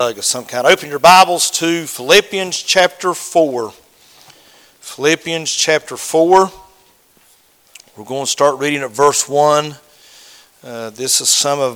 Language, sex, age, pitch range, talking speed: English, male, 50-69, 125-160 Hz, 135 wpm